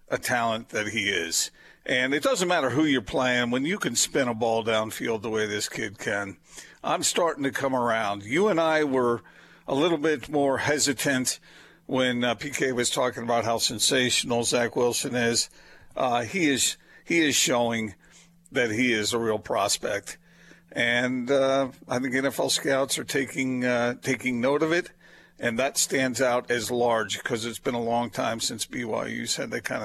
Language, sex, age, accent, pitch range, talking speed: English, male, 50-69, American, 115-140 Hz, 185 wpm